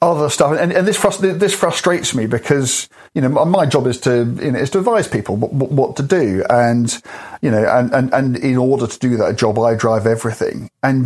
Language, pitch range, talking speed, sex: English, 115-165 Hz, 230 wpm, male